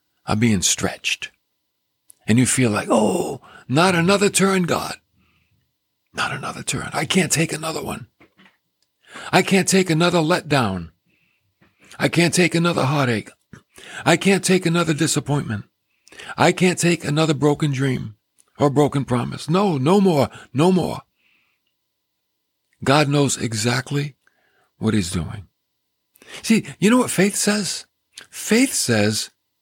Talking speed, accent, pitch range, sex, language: 130 wpm, American, 125-180 Hz, male, English